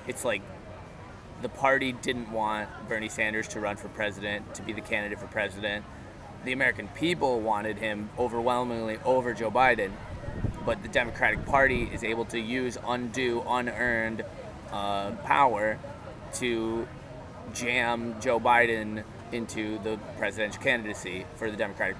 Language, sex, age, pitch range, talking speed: English, male, 20-39, 110-130 Hz, 135 wpm